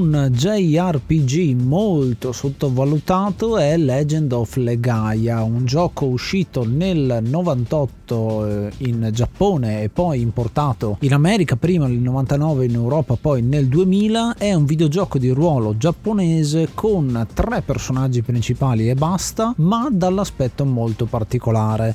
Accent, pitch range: native, 120-165 Hz